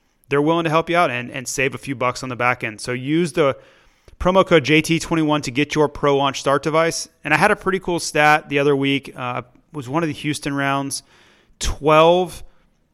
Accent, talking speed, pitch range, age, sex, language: American, 225 wpm, 120-150 Hz, 30-49, male, English